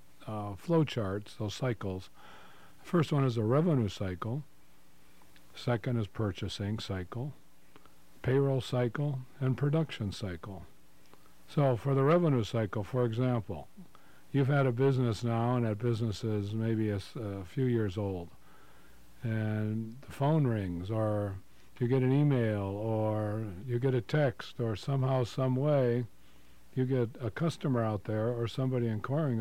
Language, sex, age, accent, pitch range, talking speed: English, male, 50-69, American, 105-135 Hz, 140 wpm